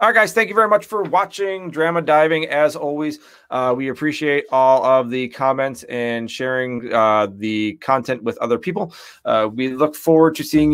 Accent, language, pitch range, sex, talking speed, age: American, English, 120-150 Hz, male, 190 wpm, 30-49